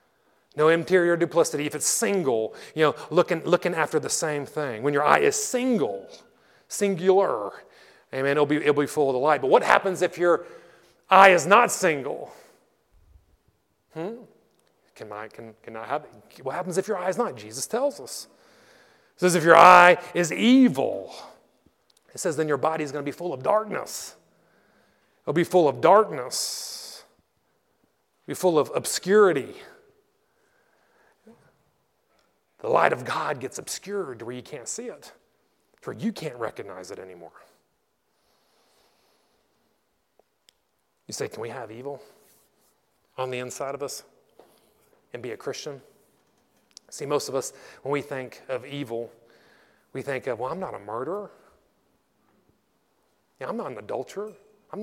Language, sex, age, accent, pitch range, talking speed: English, male, 30-49, American, 140-205 Hz, 150 wpm